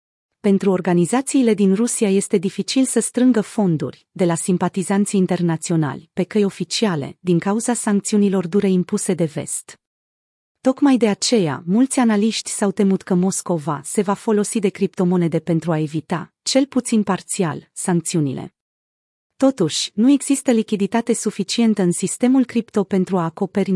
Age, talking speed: 30-49, 140 wpm